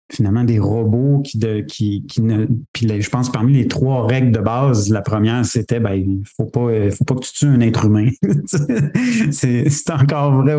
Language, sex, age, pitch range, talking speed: French, male, 30-49, 105-130 Hz, 210 wpm